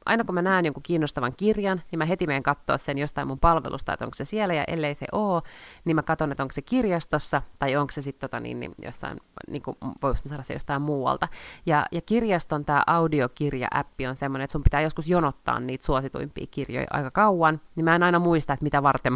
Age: 30-49